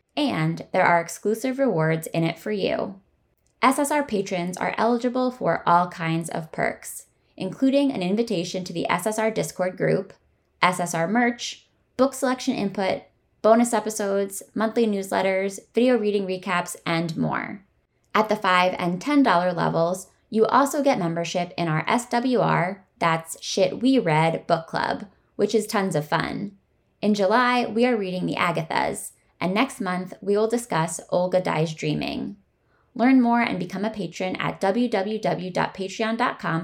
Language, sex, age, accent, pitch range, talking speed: English, female, 10-29, American, 175-235 Hz, 145 wpm